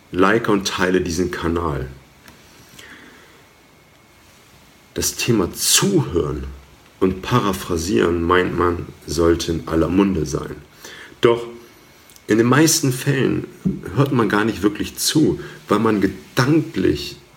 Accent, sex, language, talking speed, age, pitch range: German, male, German, 105 wpm, 50-69, 80-110 Hz